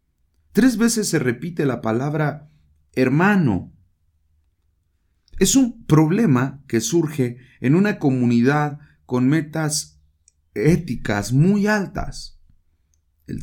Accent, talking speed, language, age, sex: Mexican, 95 wpm, English, 40-59, male